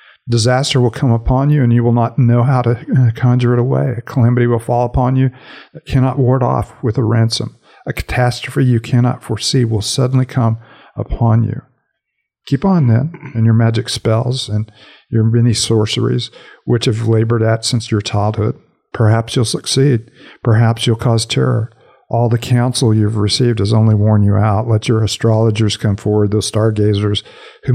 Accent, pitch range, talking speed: American, 110-125 Hz, 175 wpm